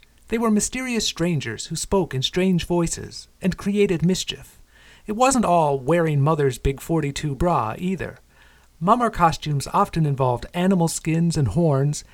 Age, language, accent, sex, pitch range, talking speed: 50-69, English, American, male, 120-175 Hz, 145 wpm